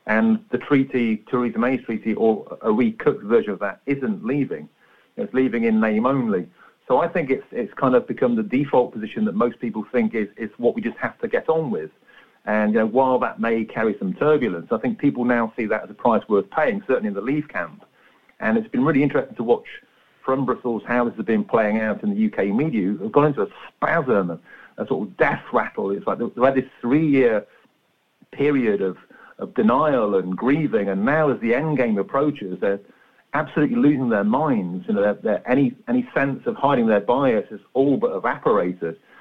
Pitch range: 110-150 Hz